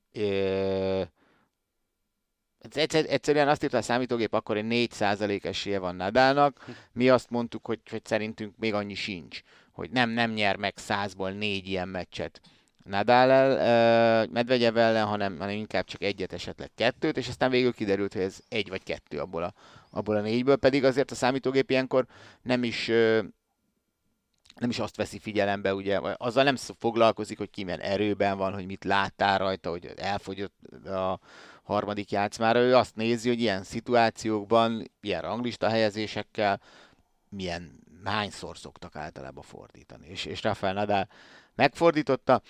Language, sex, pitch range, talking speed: Hungarian, male, 95-120 Hz, 150 wpm